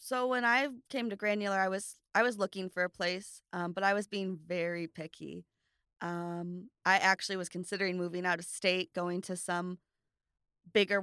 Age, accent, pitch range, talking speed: 20-39, American, 170-190 Hz, 185 wpm